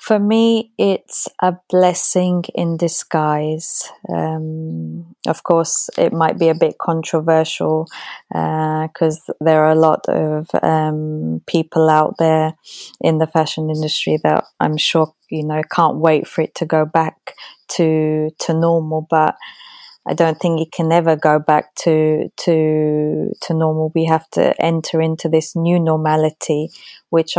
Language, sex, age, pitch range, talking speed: French, female, 20-39, 155-170 Hz, 150 wpm